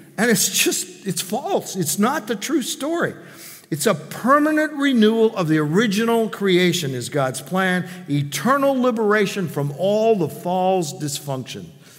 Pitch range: 155-195 Hz